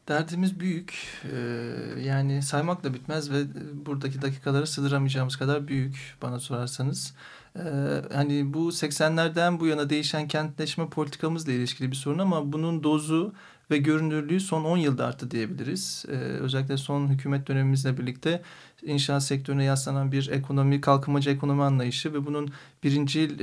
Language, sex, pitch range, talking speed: Turkish, male, 135-150 Hz, 135 wpm